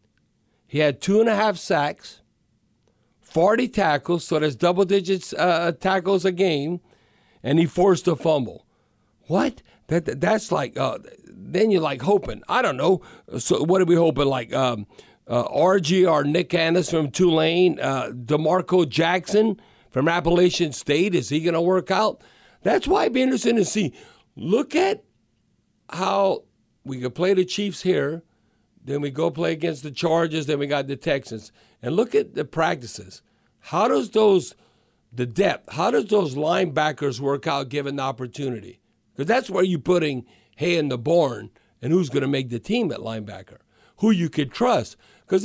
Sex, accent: male, American